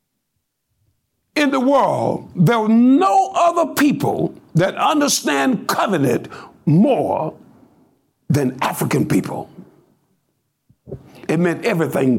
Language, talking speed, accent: English, 90 wpm, American